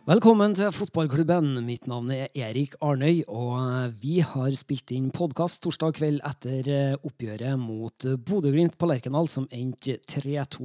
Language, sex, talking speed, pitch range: English, male, 140 wpm, 120-155 Hz